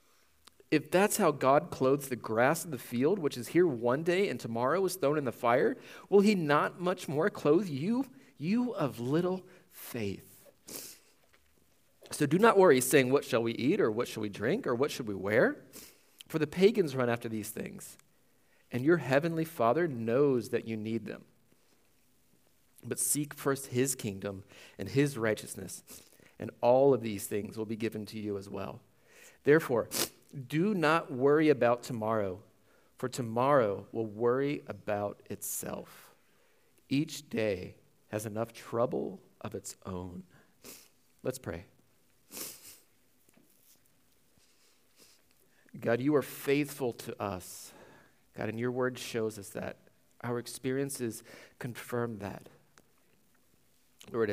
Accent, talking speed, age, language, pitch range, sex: American, 140 wpm, 30-49, English, 110-150 Hz, male